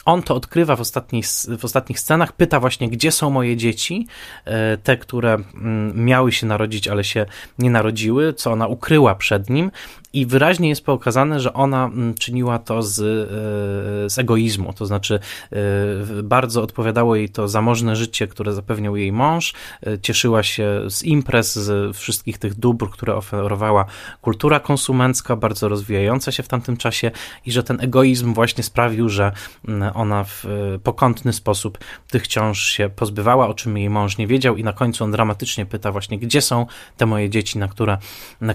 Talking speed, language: 160 wpm, Polish